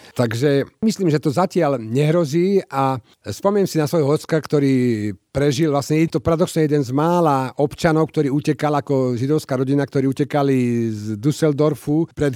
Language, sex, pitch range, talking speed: Slovak, male, 125-150 Hz, 155 wpm